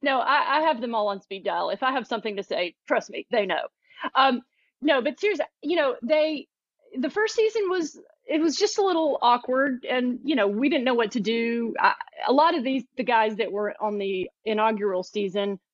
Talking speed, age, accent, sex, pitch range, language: 220 wpm, 40-59, American, female, 200-260 Hz, English